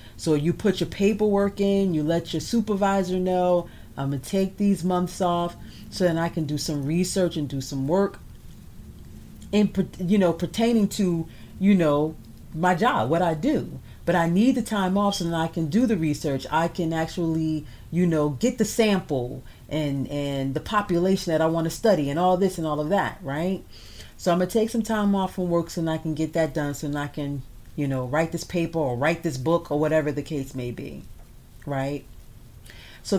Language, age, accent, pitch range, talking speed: English, 40-59, American, 145-195 Hz, 205 wpm